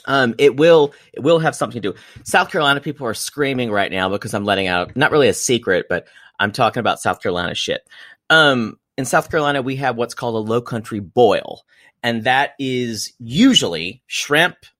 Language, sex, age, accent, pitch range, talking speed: English, male, 30-49, American, 110-145 Hz, 195 wpm